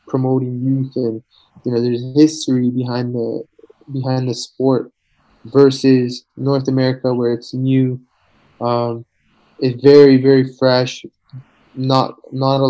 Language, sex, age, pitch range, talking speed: English, male, 20-39, 120-130 Hz, 125 wpm